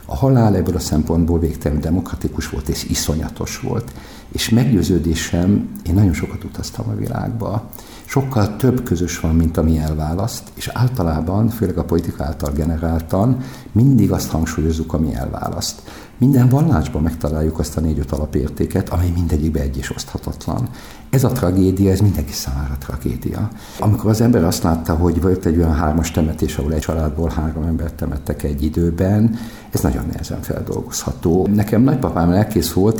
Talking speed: 155 wpm